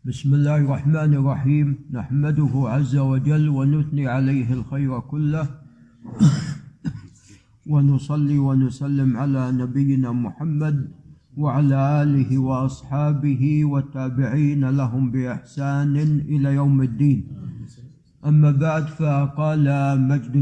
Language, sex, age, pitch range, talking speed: Arabic, male, 50-69, 135-160 Hz, 85 wpm